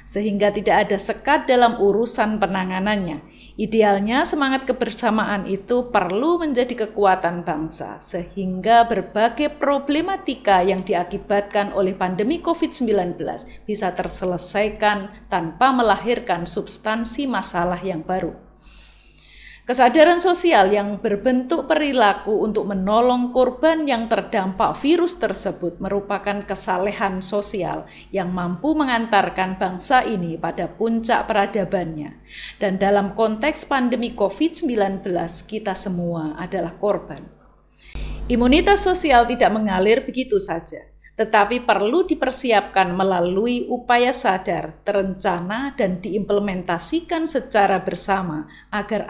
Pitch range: 190-245 Hz